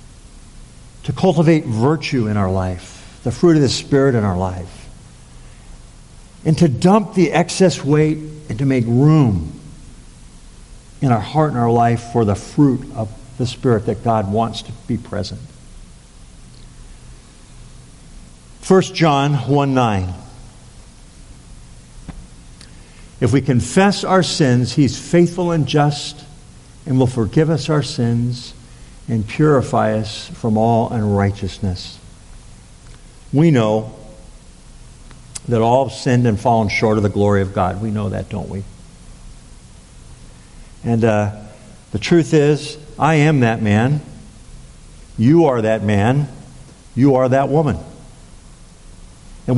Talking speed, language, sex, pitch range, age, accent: 125 wpm, English, male, 110-150 Hz, 50-69, American